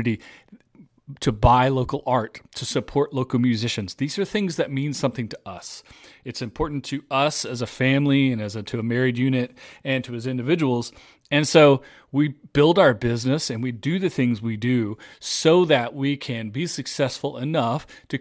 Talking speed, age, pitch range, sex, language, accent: 180 wpm, 40-59, 120-150 Hz, male, English, American